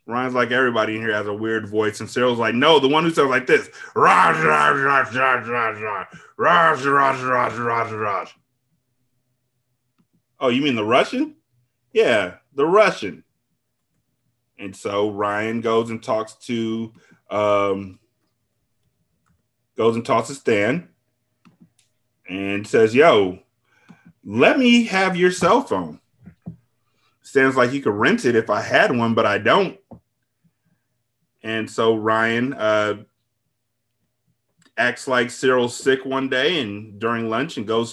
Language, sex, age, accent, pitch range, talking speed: English, male, 30-49, American, 110-125 Hz, 125 wpm